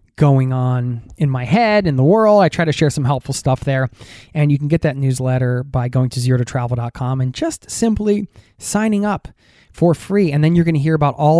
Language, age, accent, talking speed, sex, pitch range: English, 20-39, American, 220 wpm, male, 125-165 Hz